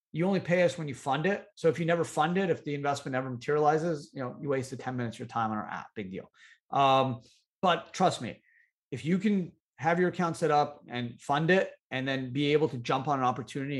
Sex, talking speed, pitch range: male, 250 wpm, 125-160 Hz